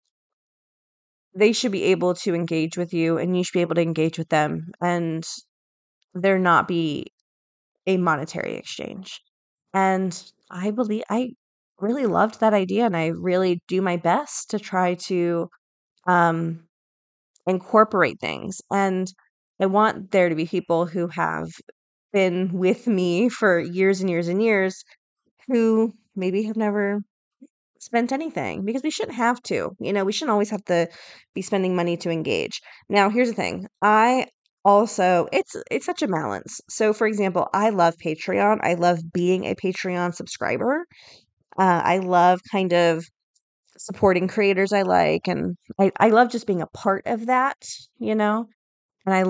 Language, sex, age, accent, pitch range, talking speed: English, female, 20-39, American, 175-210 Hz, 160 wpm